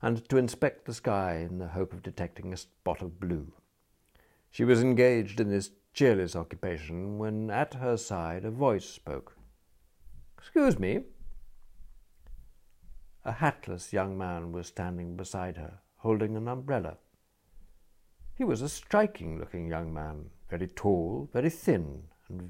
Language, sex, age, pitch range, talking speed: English, male, 60-79, 85-115 Hz, 140 wpm